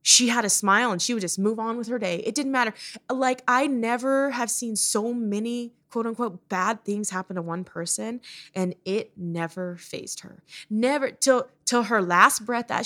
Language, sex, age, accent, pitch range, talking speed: English, female, 20-39, American, 155-230 Hz, 200 wpm